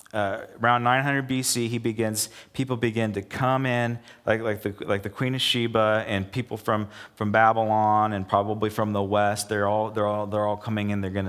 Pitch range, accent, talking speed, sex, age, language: 100-120 Hz, American, 205 wpm, male, 40-59, English